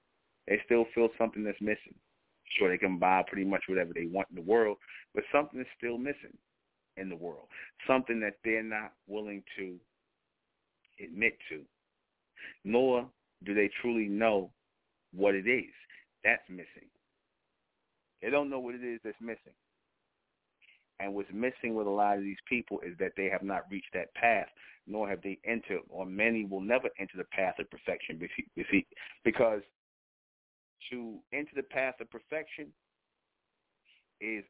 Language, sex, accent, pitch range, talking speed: English, male, American, 100-120 Hz, 155 wpm